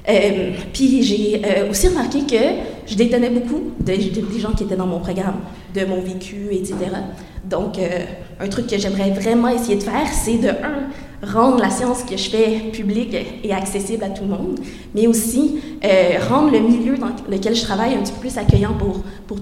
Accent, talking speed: Canadian, 205 wpm